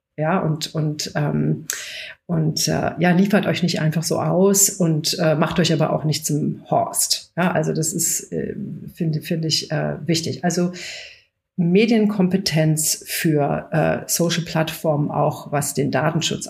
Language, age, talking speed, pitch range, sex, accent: German, 50-69, 155 wpm, 165-205 Hz, female, German